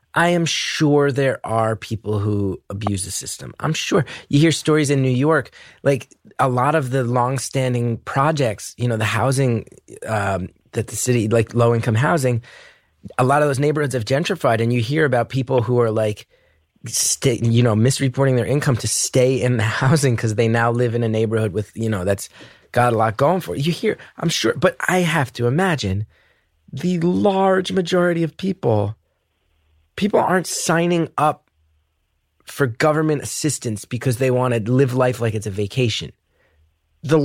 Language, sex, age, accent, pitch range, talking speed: English, male, 30-49, American, 110-145 Hz, 175 wpm